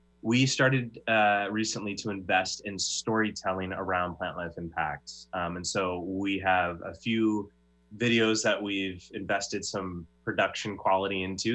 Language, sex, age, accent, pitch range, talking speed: English, male, 20-39, American, 90-110 Hz, 140 wpm